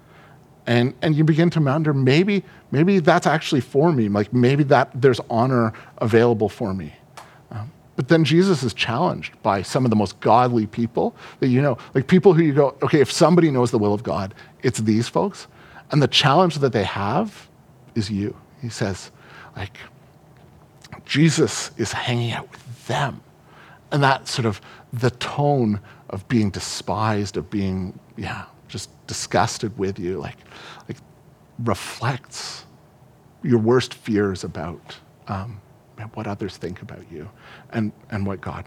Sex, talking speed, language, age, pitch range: male, 155 wpm, English, 40-59, 105-145 Hz